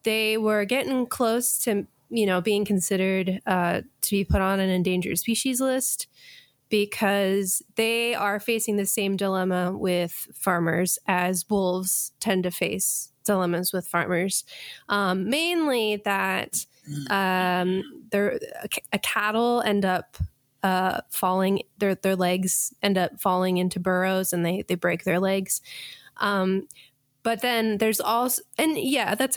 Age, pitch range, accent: 20-39, 180-220 Hz, American